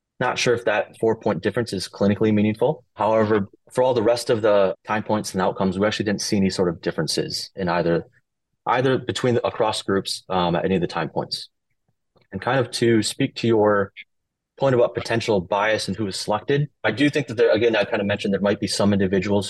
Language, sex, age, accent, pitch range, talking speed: English, male, 30-49, American, 95-110 Hz, 220 wpm